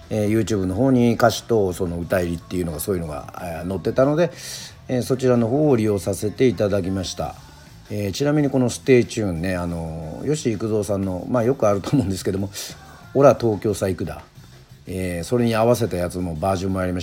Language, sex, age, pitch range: Japanese, male, 40-59, 90-120 Hz